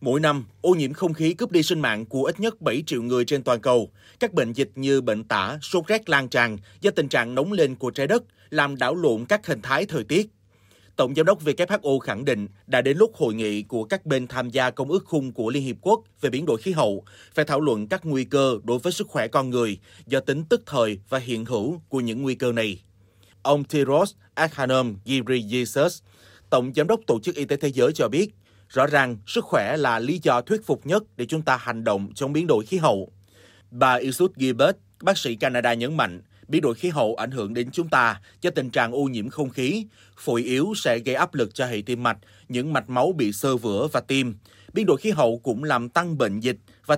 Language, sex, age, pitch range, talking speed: Vietnamese, male, 30-49, 110-150 Hz, 235 wpm